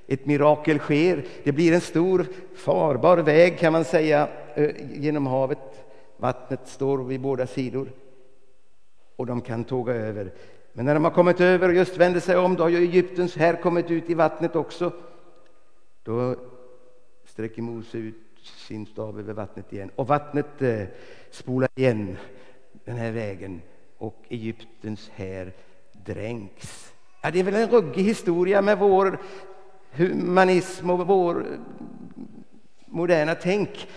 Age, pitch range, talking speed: 60-79, 120-170 Hz, 140 wpm